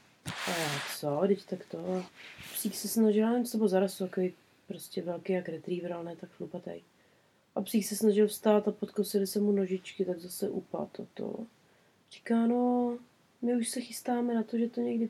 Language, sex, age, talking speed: Czech, female, 30-49, 180 wpm